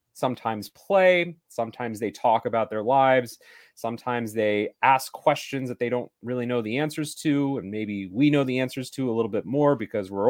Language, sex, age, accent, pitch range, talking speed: English, male, 30-49, American, 110-140 Hz, 190 wpm